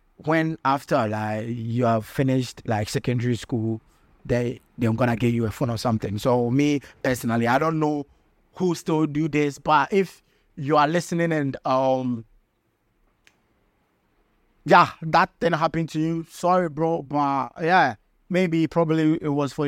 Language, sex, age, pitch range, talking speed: English, male, 30-49, 125-170 Hz, 150 wpm